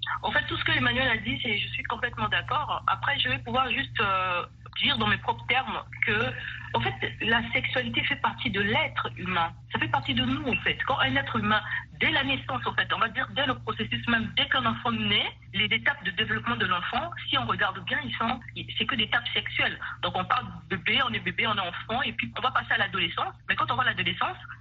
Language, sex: French, female